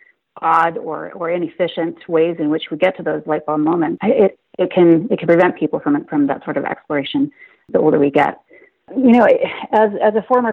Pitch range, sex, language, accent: 160-240 Hz, female, English, American